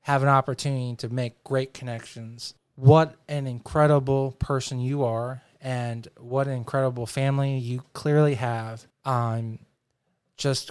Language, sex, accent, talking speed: English, male, American, 130 wpm